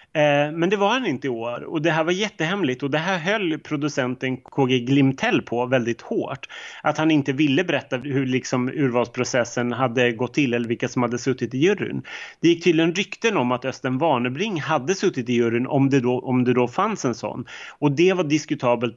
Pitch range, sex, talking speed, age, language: 125-155 Hz, male, 200 wpm, 30-49, Swedish